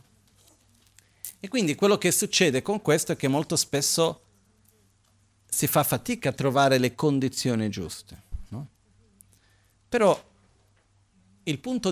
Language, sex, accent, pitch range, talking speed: Italian, male, native, 100-140 Hz, 115 wpm